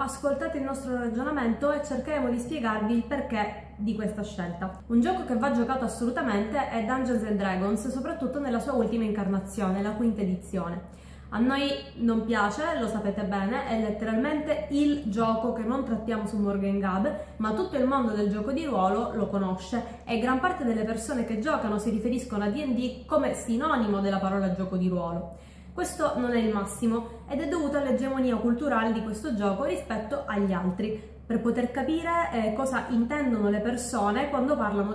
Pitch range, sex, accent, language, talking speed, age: 210-265 Hz, female, native, Italian, 175 wpm, 20-39